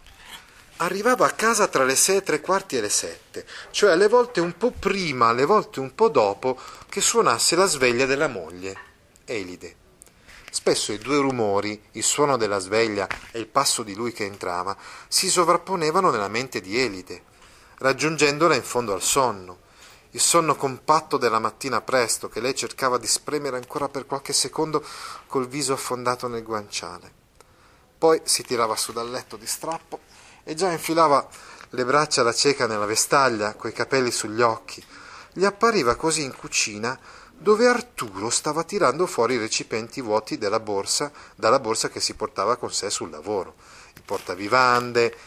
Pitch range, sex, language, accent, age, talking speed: 115-165 Hz, male, Italian, native, 40-59, 165 wpm